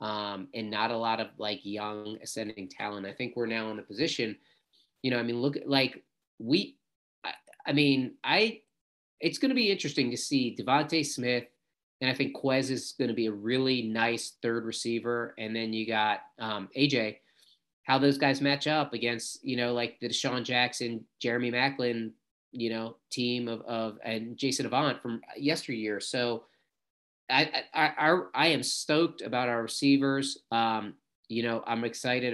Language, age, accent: English, 30-49, American